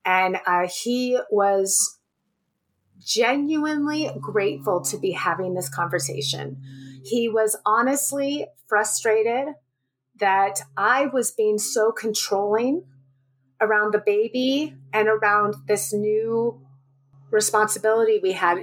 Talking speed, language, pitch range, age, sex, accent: 100 wpm, English, 180-230 Hz, 30-49, female, American